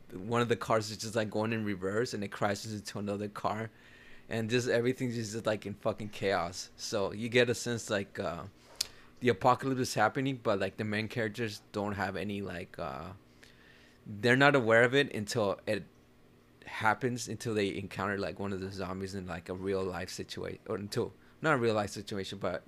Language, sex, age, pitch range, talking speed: English, male, 20-39, 95-120 Hz, 200 wpm